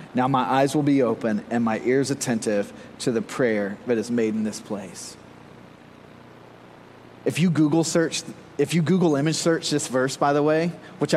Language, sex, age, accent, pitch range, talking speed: English, male, 30-49, American, 125-165 Hz, 185 wpm